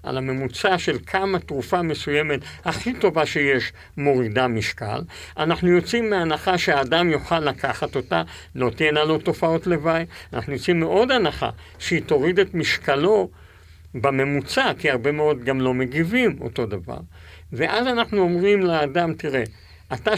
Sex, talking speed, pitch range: male, 135 wpm, 115-180 Hz